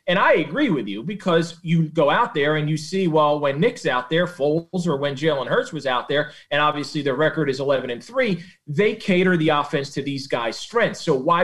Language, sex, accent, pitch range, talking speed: English, male, American, 150-195 Hz, 230 wpm